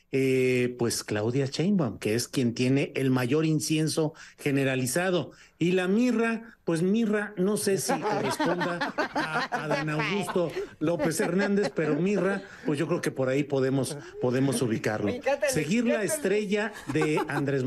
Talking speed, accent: 145 wpm, Mexican